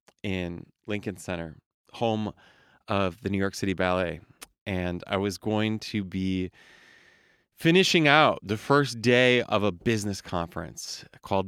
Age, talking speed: 20-39, 135 wpm